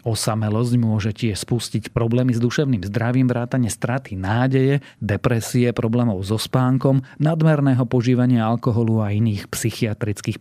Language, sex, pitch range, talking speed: Slovak, male, 110-130 Hz, 120 wpm